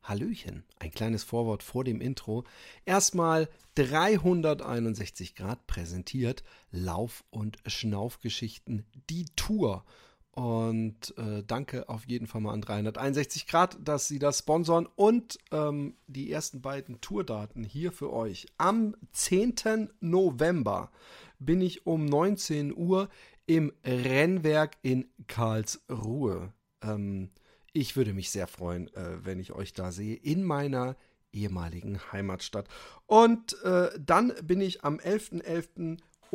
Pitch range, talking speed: 115-160 Hz, 115 wpm